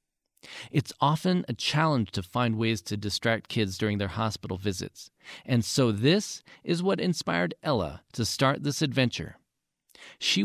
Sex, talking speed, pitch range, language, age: male, 150 wpm, 105-155 Hz, English, 40-59